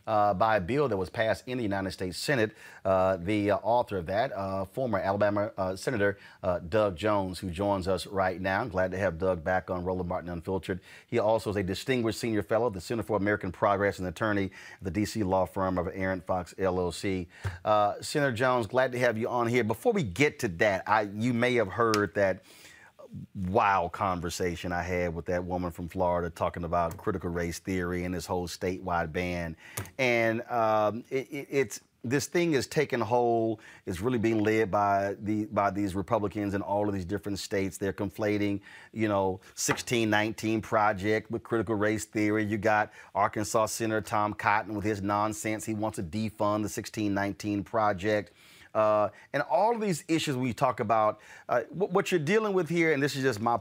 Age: 30-49